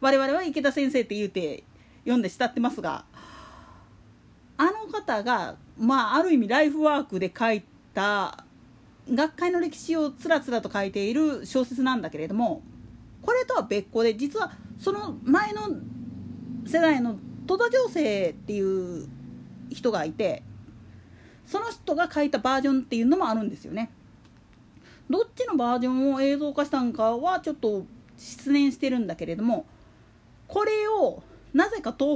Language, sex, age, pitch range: Japanese, female, 40-59, 210-310 Hz